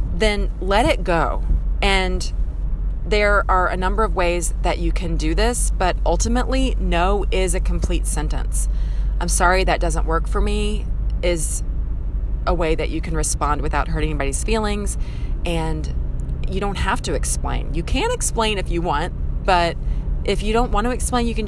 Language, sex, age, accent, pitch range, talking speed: English, female, 30-49, American, 150-195 Hz, 175 wpm